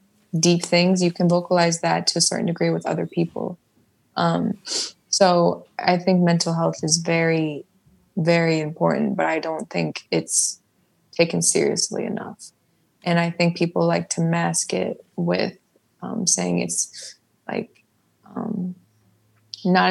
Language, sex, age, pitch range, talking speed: English, female, 20-39, 165-180 Hz, 140 wpm